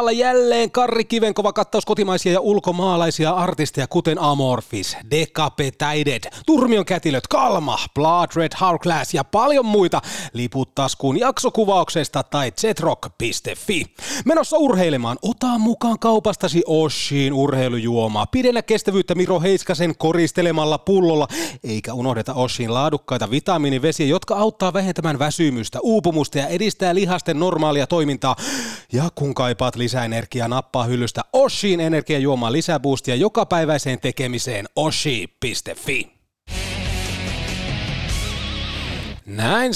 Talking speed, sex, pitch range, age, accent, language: 95 wpm, male, 125-190 Hz, 30-49, native, Finnish